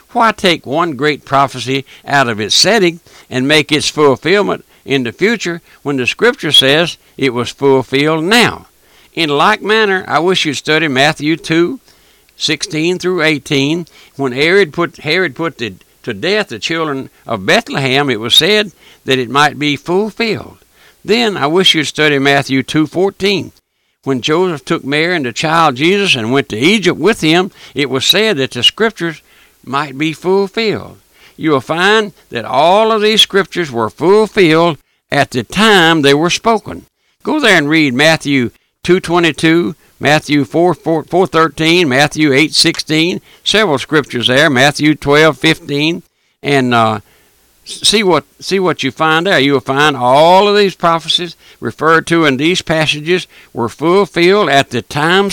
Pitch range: 140-180 Hz